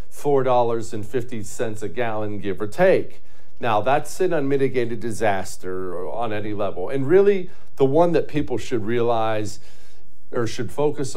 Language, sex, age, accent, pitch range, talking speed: English, male, 50-69, American, 95-125 Hz, 155 wpm